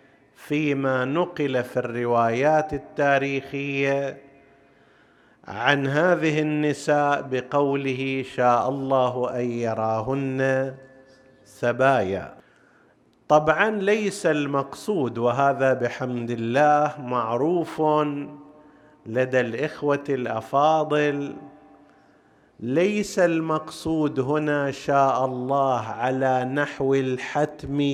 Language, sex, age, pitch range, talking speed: Arabic, male, 50-69, 125-150 Hz, 70 wpm